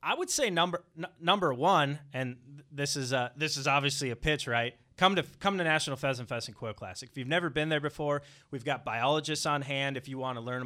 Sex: male